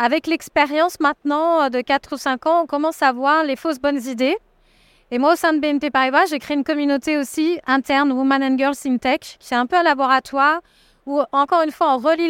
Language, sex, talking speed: French, female, 225 wpm